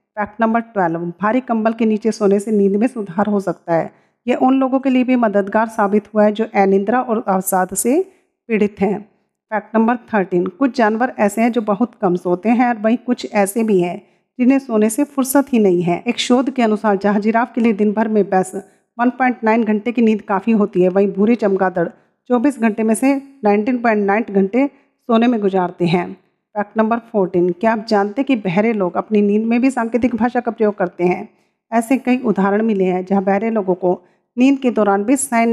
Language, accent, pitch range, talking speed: Hindi, native, 195-240 Hz, 205 wpm